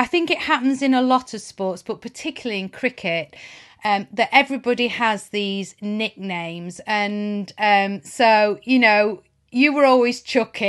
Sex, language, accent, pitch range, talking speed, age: female, English, British, 205-265 Hz, 155 wpm, 30-49